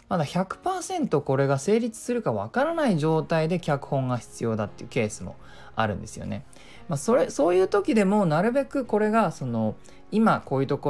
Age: 20-39